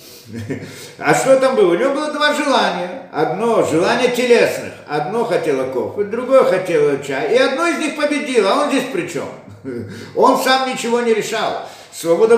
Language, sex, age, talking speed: Russian, male, 50-69, 165 wpm